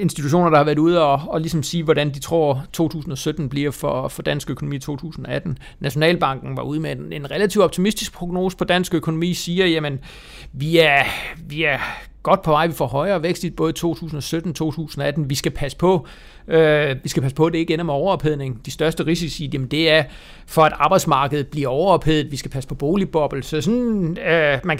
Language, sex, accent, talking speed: Danish, male, native, 205 wpm